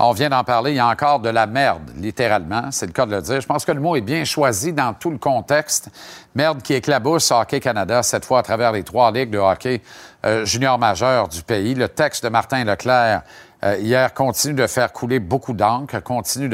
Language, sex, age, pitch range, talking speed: French, male, 50-69, 110-140 Hz, 230 wpm